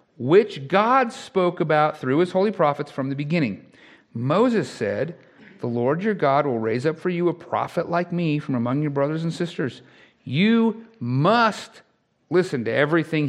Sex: male